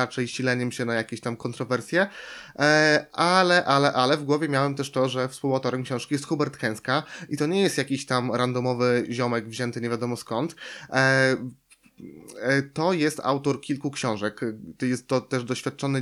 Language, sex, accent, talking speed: Polish, male, native, 155 wpm